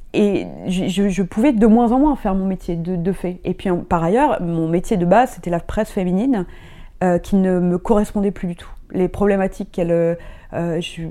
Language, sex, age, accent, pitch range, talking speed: French, female, 20-39, French, 165-210 Hz, 205 wpm